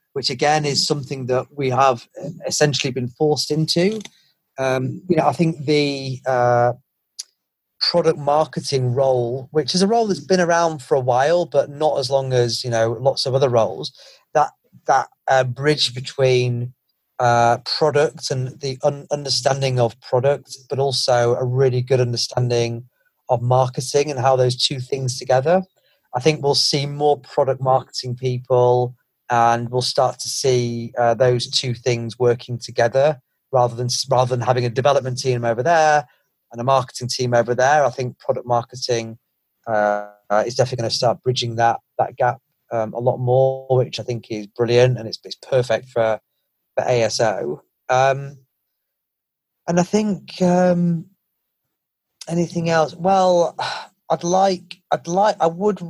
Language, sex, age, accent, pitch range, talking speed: English, male, 30-49, British, 125-150 Hz, 160 wpm